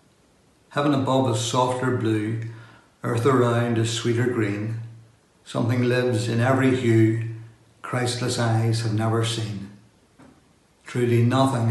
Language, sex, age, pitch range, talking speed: English, male, 60-79, 115-125 Hz, 115 wpm